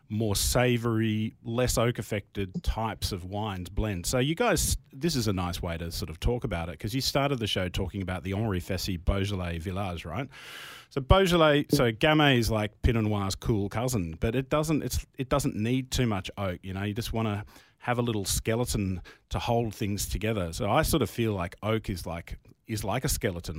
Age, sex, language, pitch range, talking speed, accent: 30-49, male, English, 95-120 Hz, 210 wpm, Australian